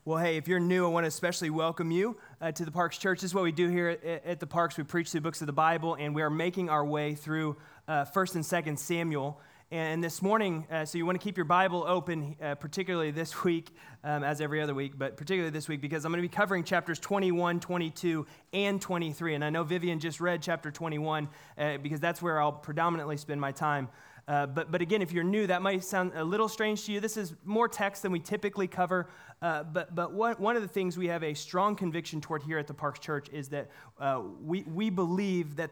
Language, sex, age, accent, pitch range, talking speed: English, male, 20-39, American, 150-185 Hz, 245 wpm